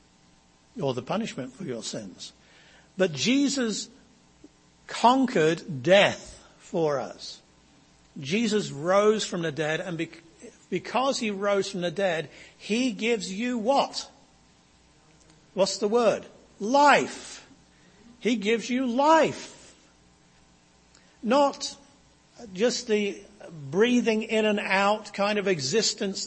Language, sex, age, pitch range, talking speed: English, male, 60-79, 155-220 Hz, 105 wpm